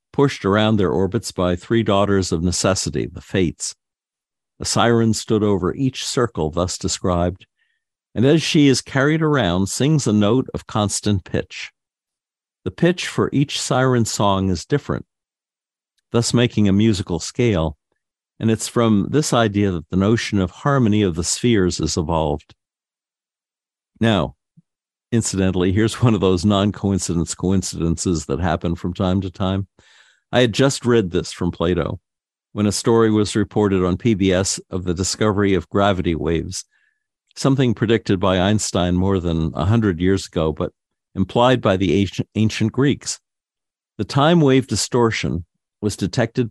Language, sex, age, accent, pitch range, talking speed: English, male, 50-69, American, 90-115 Hz, 150 wpm